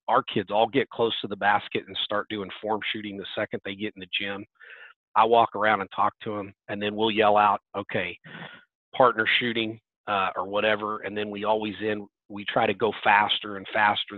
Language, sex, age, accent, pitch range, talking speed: English, male, 40-59, American, 100-110 Hz, 210 wpm